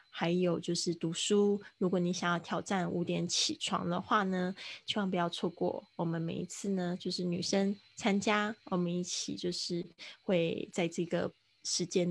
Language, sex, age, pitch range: Chinese, female, 20-39, 175-200 Hz